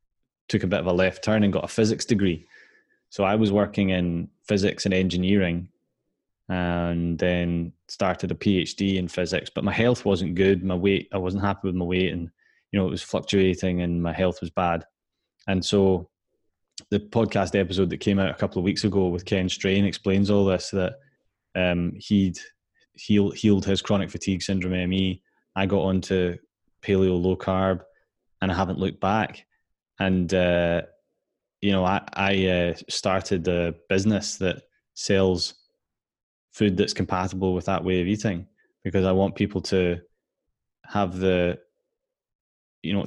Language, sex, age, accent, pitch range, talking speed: English, male, 20-39, British, 90-100 Hz, 165 wpm